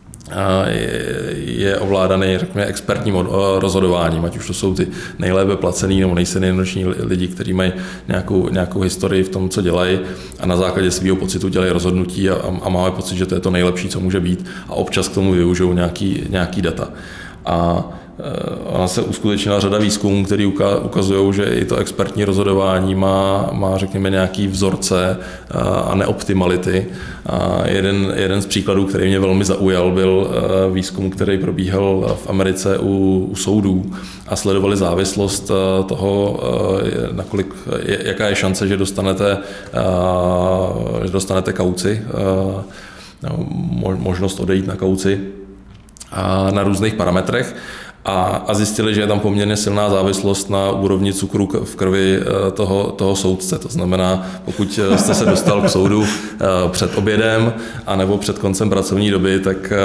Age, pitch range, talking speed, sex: 20-39, 95-100 Hz, 140 wpm, male